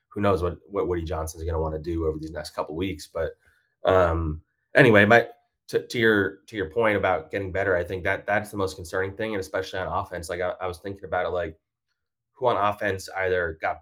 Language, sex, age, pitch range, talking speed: English, male, 20-39, 85-100 Hz, 240 wpm